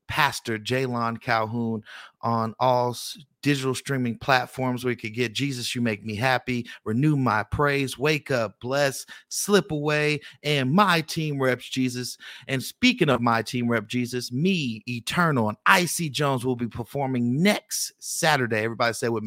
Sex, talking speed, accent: male, 155 wpm, American